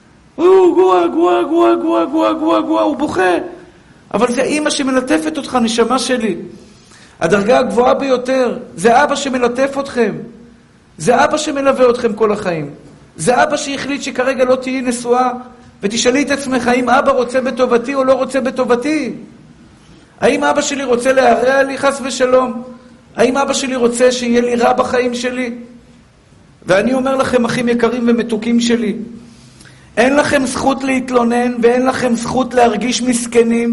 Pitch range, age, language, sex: 235-260 Hz, 50-69, Hebrew, male